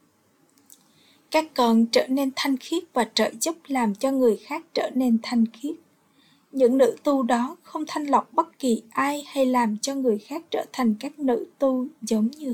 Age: 20-39